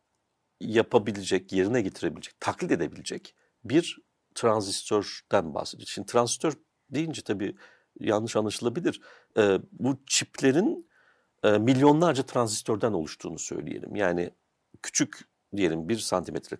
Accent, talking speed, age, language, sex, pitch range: native, 95 wpm, 60-79, Turkish, male, 105-150 Hz